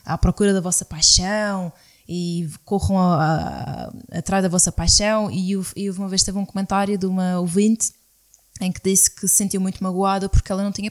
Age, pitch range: 20-39, 180-215 Hz